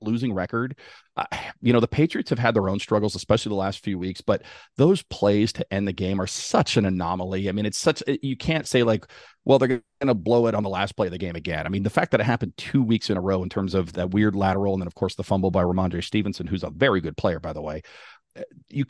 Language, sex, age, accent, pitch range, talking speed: English, male, 40-59, American, 95-120 Hz, 270 wpm